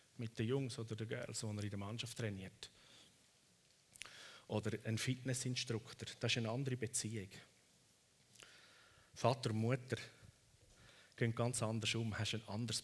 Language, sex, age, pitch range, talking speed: German, male, 40-59, 110-140 Hz, 140 wpm